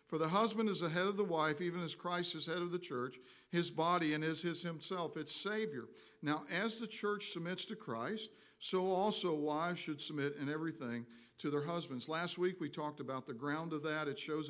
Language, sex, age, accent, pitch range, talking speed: English, male, 50-69, American, 150-185 Hz, 220 wpm